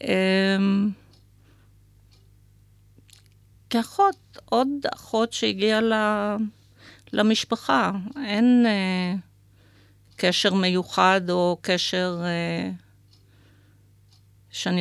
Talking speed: 45 wpm